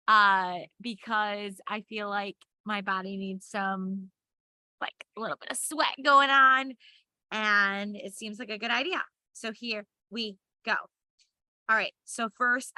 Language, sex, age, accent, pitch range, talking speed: English, female, 20-39, American, 215-260 Hz, 150 wpm